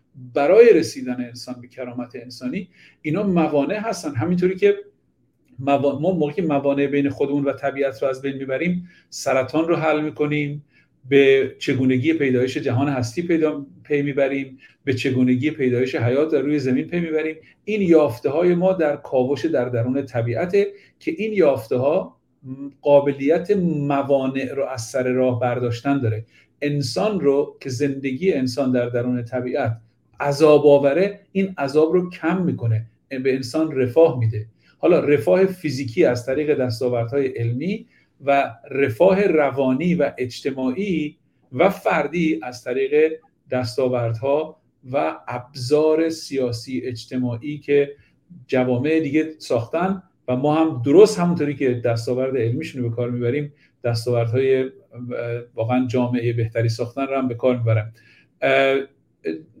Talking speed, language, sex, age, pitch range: 135 wpm, Persian, male, 50-69, 125-155 Hz